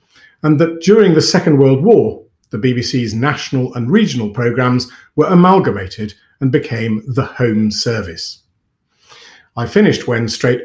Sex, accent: male, British